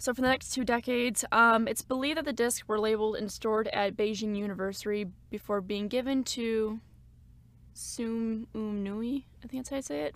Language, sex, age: English, female, 10-29